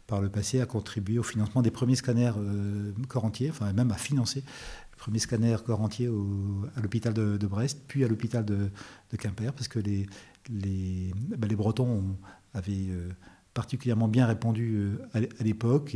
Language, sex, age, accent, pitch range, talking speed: French, male, 40-59, French, 100-115 Hz, 190 wpm